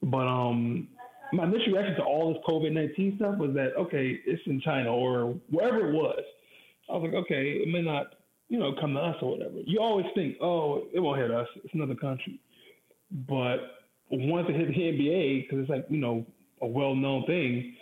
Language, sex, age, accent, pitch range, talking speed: English, male, 20-39, American, 130-170 Hz, 200 wpm